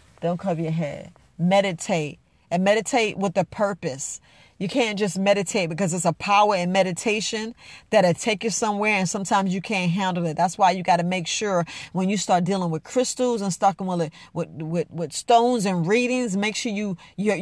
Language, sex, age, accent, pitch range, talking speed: English, female, 40-59, American, 175-220 Hz, 195 wpm